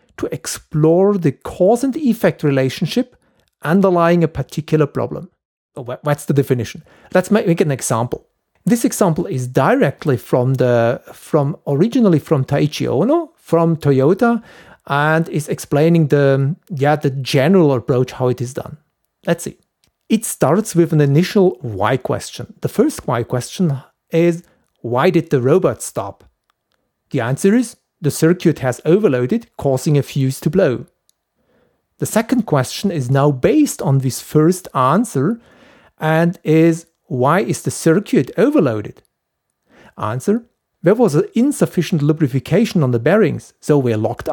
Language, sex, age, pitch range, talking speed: English, male, 40-59, 135-190 Hz, 140 wpm